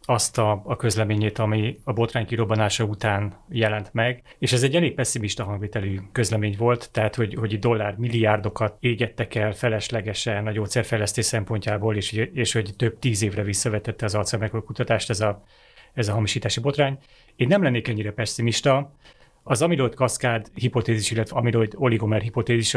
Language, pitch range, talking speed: Hungarian, 110-120 Hz, 155 wpm